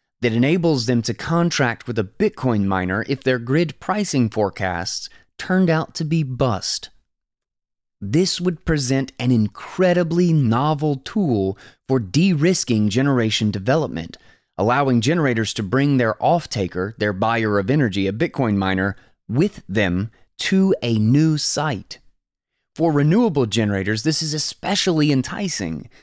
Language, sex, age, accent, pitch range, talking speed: English, male, 30-49, American, 110-160 Hz, 130 wpm